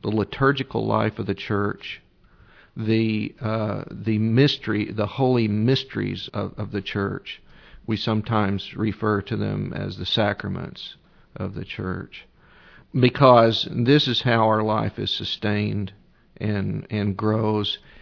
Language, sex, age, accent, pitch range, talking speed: English, male, 50-69, American, 105-125 Hz, 130 wpm